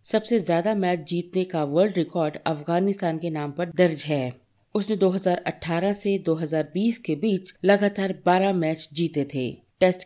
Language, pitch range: Hindi, 160-205 Hz